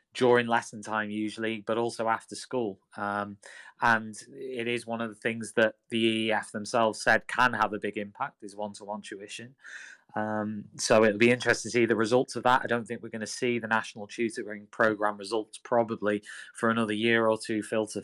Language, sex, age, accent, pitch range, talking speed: English, male, 20-39, British, 105-120 Hz, 195 wpm